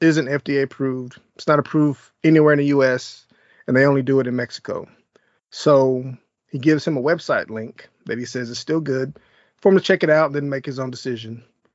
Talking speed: 215 wpm